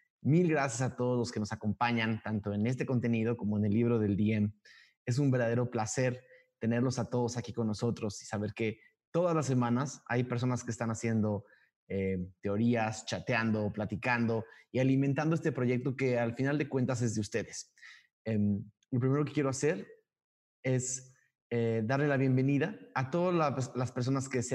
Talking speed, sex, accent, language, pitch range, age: 175 wpm, male, Mexican, Spanish, 110-135 Hz, 20-39